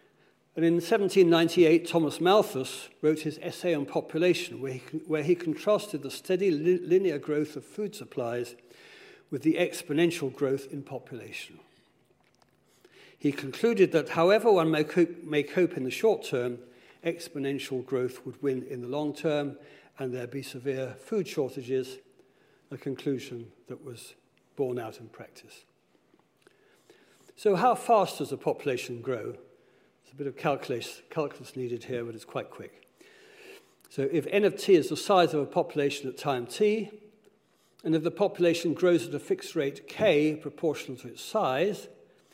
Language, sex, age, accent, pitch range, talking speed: English, male, 60-79, British, 130-175 Hz, 155 wpm